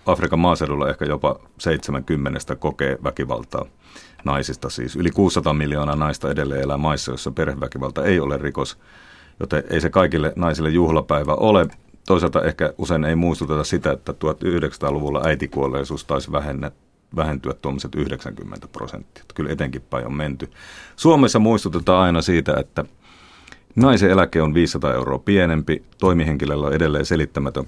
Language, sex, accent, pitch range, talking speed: Finnish, male, native, 70-85 Hz, 135 wpm